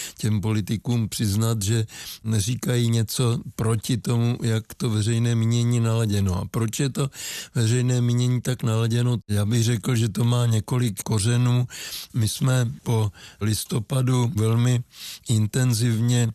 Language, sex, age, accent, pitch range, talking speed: Czech, male, 60-79, native, 105-120 Hz, 130 wpm